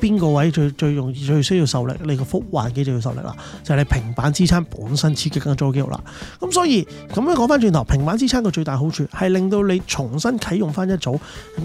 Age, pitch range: 30-49, 135-185 Hz